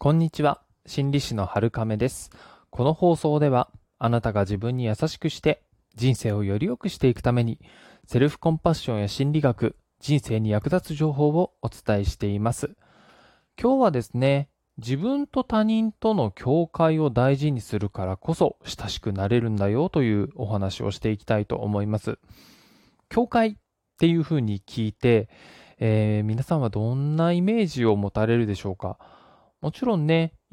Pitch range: 105-160 Hz